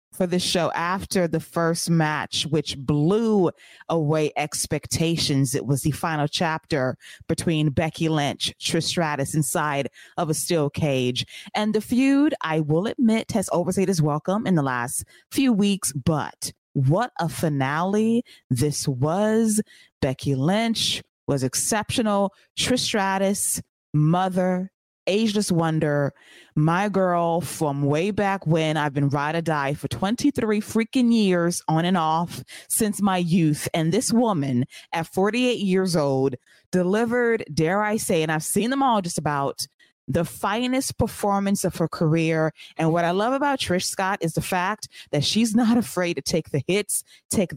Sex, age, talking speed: female, 20-39, 150 wpm